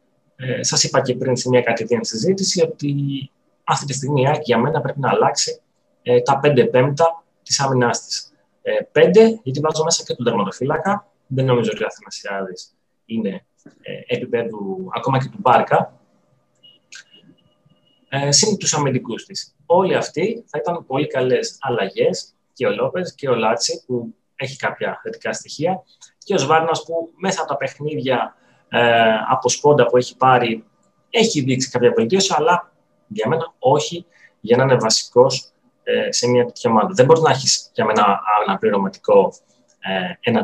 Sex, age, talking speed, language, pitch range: male, 30-49, 155 wpm, Greek, 125-195 Hz